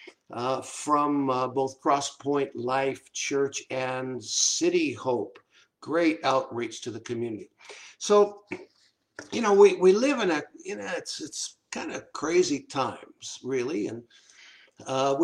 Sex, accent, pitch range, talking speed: male, American, 135-185 Hz, 140 wpm